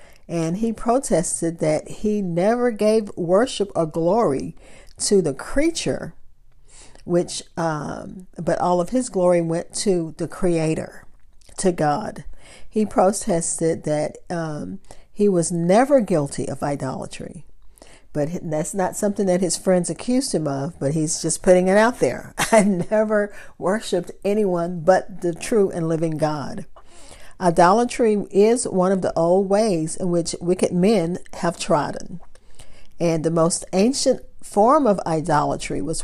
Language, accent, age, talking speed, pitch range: English, American, 50-69, 140 wpm, 165-205 Hz